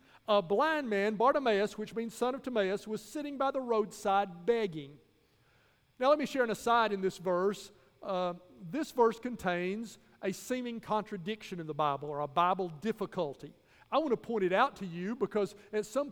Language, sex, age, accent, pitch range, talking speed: English, male, 40-59, American, 175-215 Hz, 180 wpm